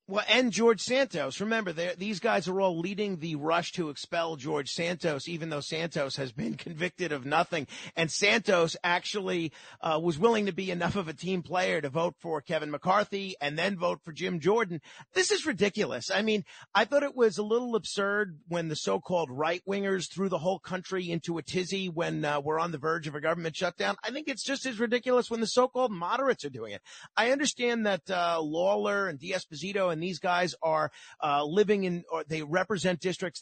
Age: 40-59